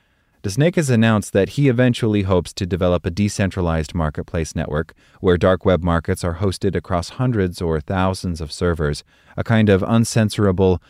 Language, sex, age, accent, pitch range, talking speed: English, male, 30-49, American, 85-110 Hz, 160 wpm